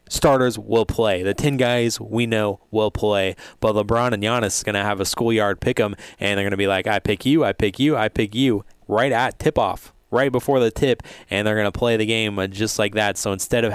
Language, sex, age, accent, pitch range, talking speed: English, male, 20-39, American, 95-115 Hz, 255 wpm